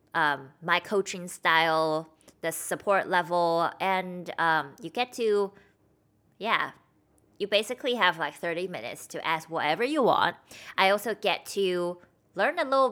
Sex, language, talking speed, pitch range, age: female, English, 145 wpm, 160-205 Hz, 20-39